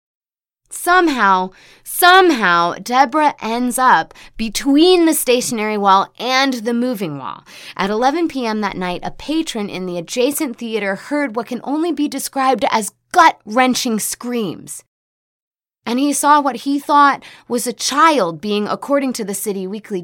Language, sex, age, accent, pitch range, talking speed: English, female, 20-39, American, 185-255 Hz, 145 wpm